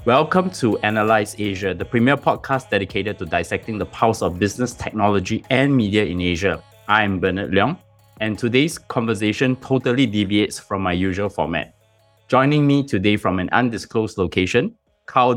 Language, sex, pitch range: English, male, 100-120 Hz